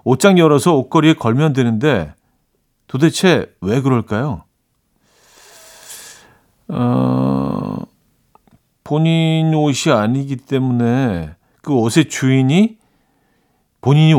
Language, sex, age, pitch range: Korean, male, 40-59, 115-160 Hz